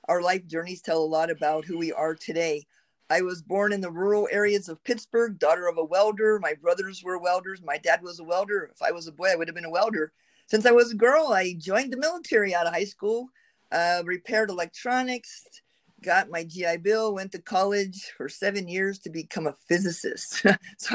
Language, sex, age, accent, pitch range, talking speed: English, female, 50-69, American, 170-215 Hz, 215 wpm